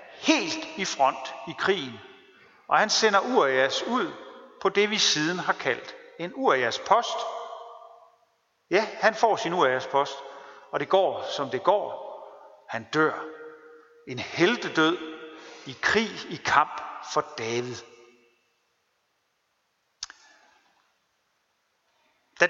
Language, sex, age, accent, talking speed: Danish, male, 50-69, native, 110 wpm